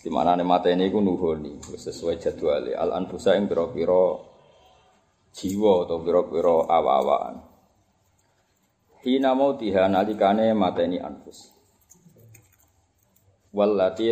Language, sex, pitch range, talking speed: Indonesian, male, 95-115 Hz, 100 wpm